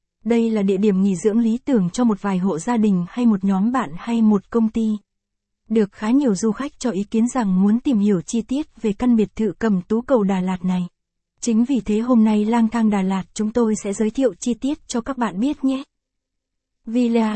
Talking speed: 235 wpm